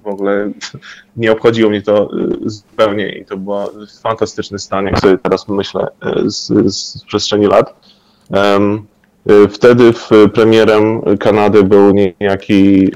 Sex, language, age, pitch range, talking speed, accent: male, Polish, 20-39, 100-115 Hz, 115 wpm, native